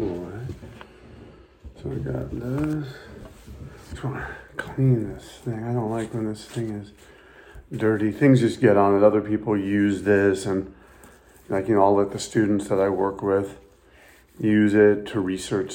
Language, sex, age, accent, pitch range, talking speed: English, male, 40-59, American, 95-110 Hz, 170 wpm